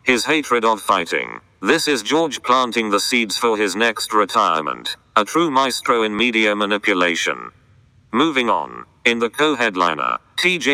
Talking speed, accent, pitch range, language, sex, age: 145 wpm, British, 110-125 Hz, English, male, 40-59